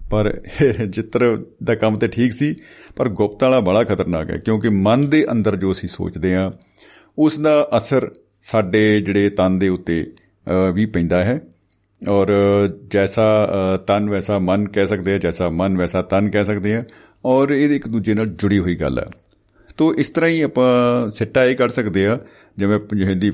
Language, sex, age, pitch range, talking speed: Punjabi, male, 50-69, 95-125 Hz, 175 wpm